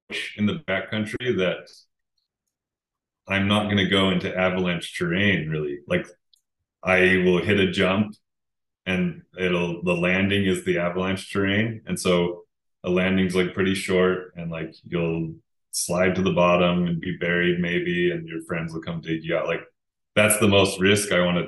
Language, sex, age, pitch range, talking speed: English, male, 20-39, 85-95 Hz, 170 wpm